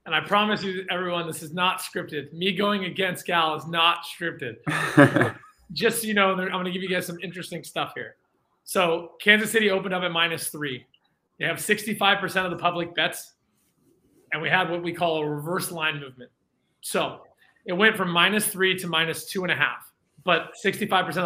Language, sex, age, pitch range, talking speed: English, male, 30-49, 165-195 Hz, 195 wpm